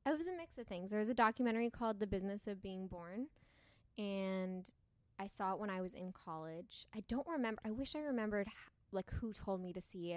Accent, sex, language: American, female, English